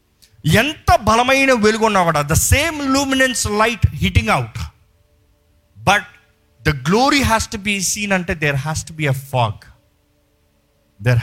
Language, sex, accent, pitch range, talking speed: Telugu, male, native, 110-185 Hz, 135 wpm